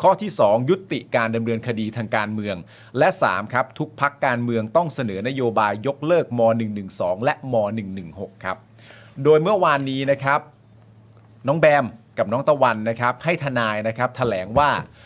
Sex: male